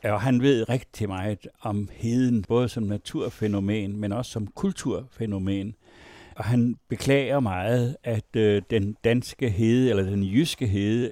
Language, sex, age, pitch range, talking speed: Danish, male, 60-79, 105-130 Hz, 140 wpm